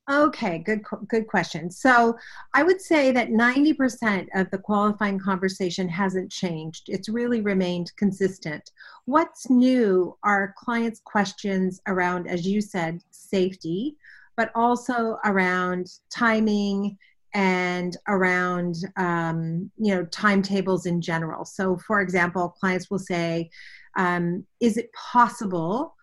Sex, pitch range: female, 180-215 Hz